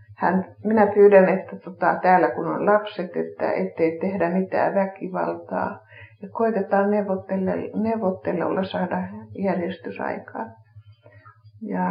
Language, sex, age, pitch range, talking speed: Finnish, female, 60-79, 170-210 Hz, 105 wpm